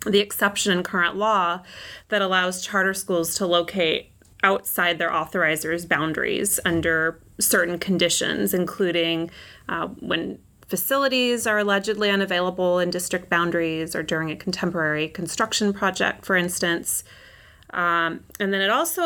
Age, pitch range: 30-49, 170-205 Hz